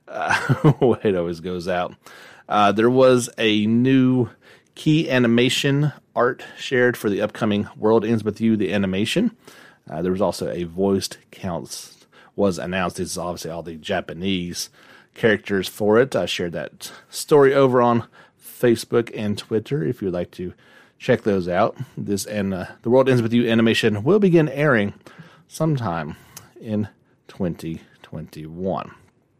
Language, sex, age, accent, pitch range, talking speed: English, male, 30-49, American, 95-125 Hz, 145 wpm